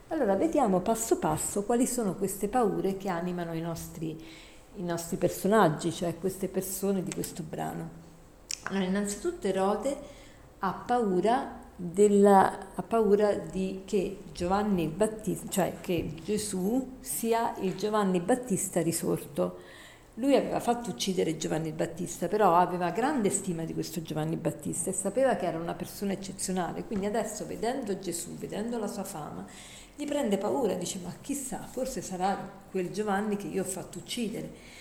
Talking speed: 145 wpm